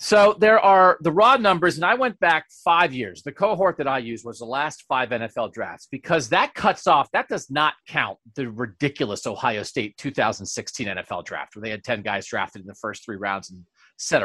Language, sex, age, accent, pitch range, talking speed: English, male, 40-59, American, 120-170 Hz, 215 wpm